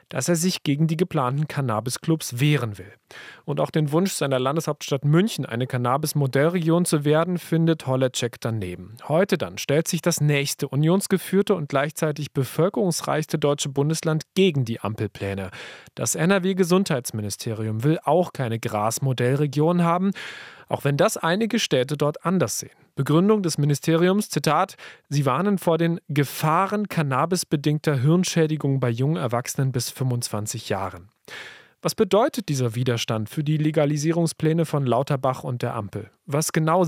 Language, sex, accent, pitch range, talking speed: German, male, German, 130-175 Hz, 135 wpm